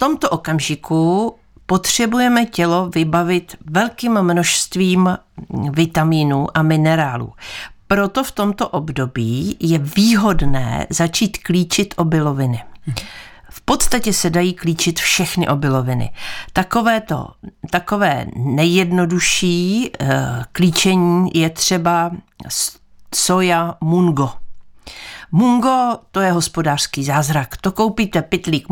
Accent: native